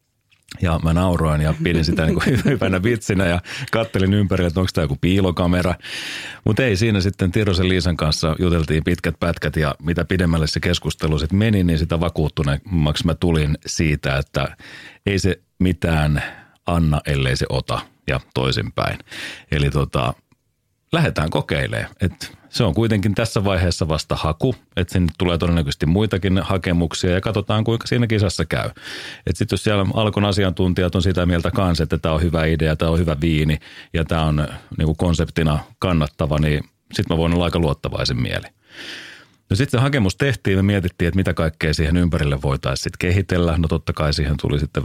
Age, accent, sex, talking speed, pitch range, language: 40-59, native, male, 170 wpm, 80-95 Hz, Finnish